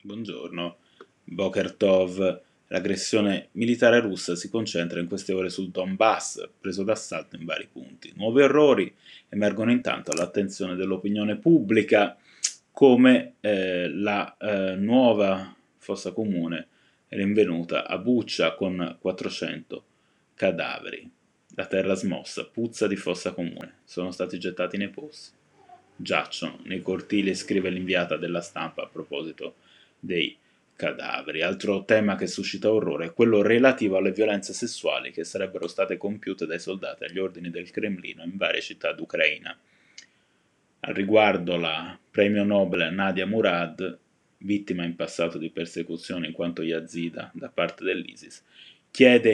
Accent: native